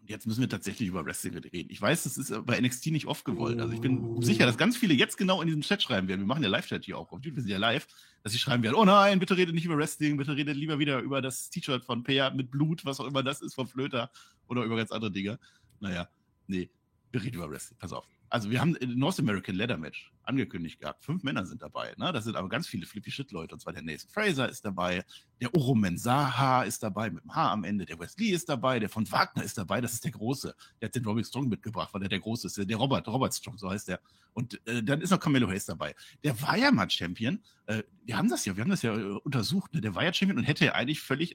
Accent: German